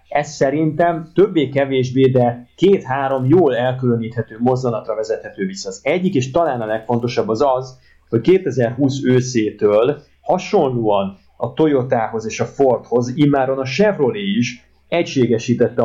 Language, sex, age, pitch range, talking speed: Hungarian, male, 30-49, 115-140 Hz, 120 wpm